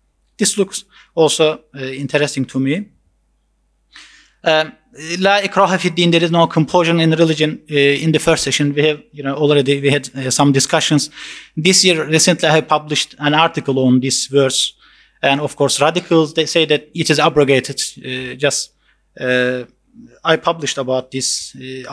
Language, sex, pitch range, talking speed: English, male, 140-175 Hz, 160 wpm